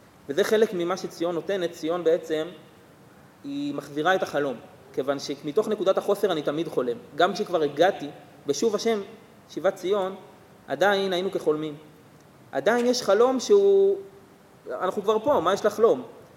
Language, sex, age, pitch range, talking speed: Hebrew, male, 30-49, 145-185 Hz, 140 wpm